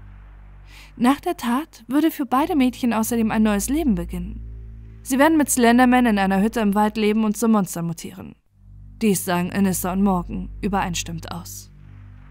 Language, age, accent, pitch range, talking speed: German, 20-39, German, 175-225 Hz, 160 wpm